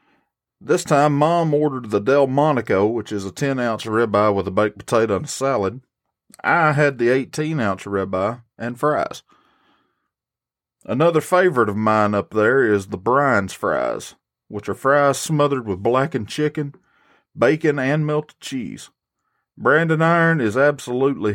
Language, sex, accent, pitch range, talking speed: English, male, American, 105-145 Hz, 140 wpm